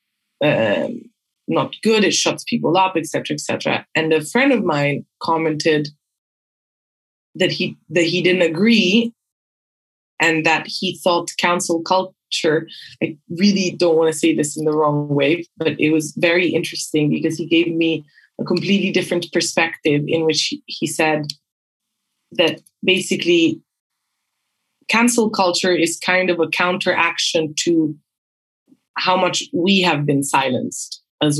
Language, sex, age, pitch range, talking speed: English, female, 20-39, 160-190 Hz, 140 wpm